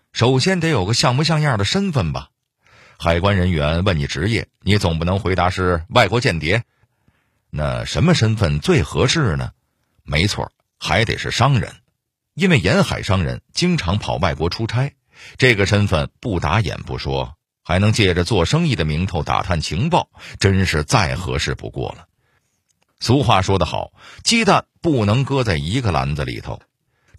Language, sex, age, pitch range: Chinese, male, 50-69, 85-130 Hz